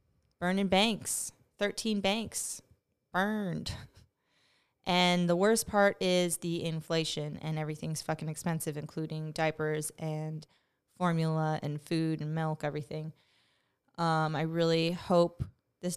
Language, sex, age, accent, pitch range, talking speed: English, female, 20-39, American, 155-195 Hz, 115 wpm